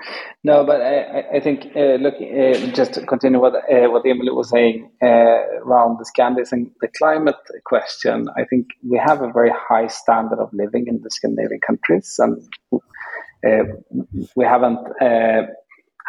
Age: 30-49